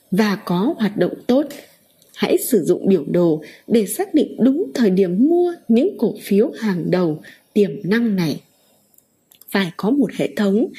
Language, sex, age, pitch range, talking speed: Vietnamese, female, 20-39, 195-270 Hz, 165 wpm